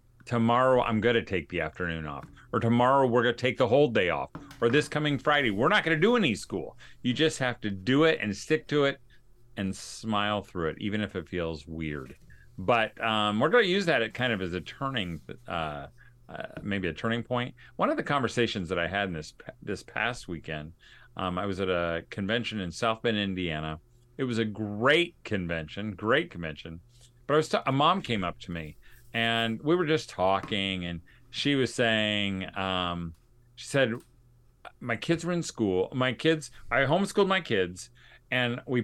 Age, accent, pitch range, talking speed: 40-59, American, 95-125 Hz, 200 wpm